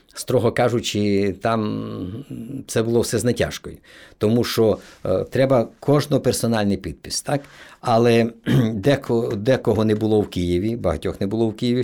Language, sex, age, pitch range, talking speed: Ukrainian, male, 50-69, 105-130 Hz, 140 wpm